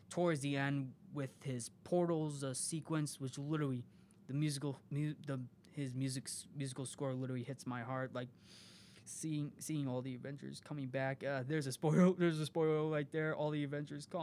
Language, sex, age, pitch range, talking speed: English, male, 20-39, 130-155 Hz, 180 wpm